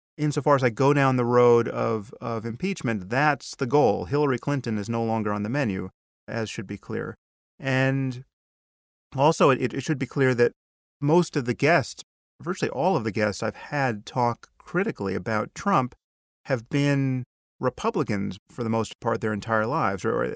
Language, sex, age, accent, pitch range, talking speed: English, male, 30-49, American, 110-135 Hz, 175 wpm